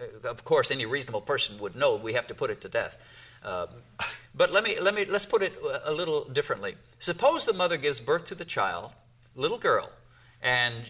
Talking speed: 210 wpm